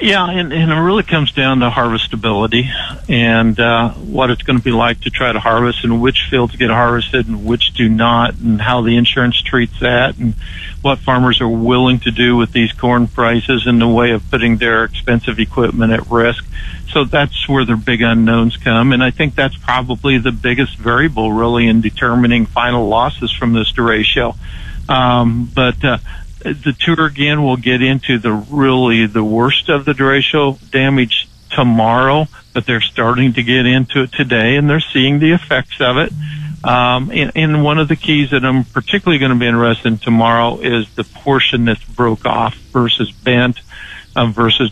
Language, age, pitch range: English, 60-79, 115-135 Hz